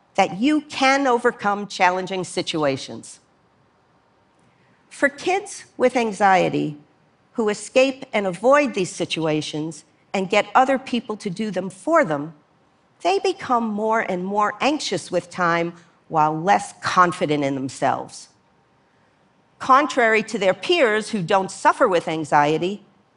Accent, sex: American, female